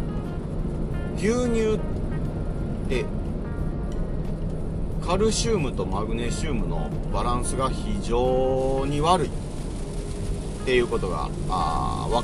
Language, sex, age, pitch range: Japanese, male, 40-59, 90-150 Hz